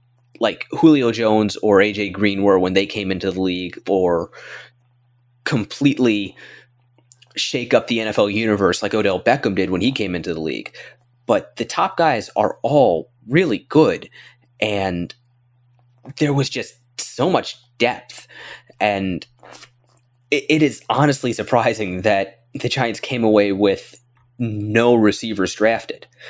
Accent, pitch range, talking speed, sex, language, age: American, 105-130 Hz, 135 wpm, male, English, 20-39